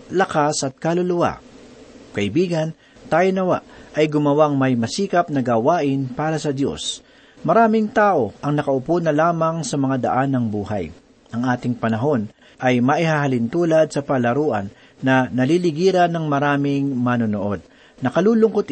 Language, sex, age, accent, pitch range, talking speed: Filipino, male, 40-59, native, 130-170 Hz, 130 wpm